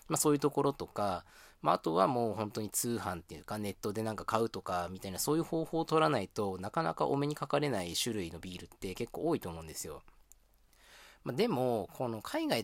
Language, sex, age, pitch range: Japanese, male, 20-39, 95-135 Hz